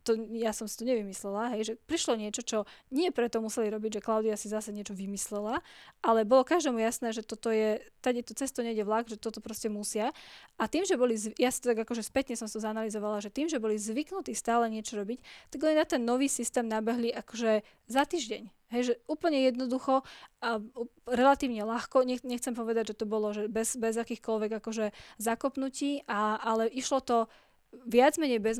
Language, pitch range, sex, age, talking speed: Slovak, 215-245 Hz, female, 10-29, 195 wpm